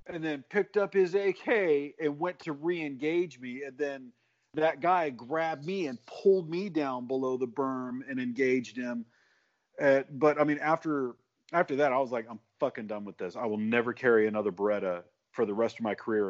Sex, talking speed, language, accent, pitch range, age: male, 200 wpm, English, American, 110-160 Hz, 40-59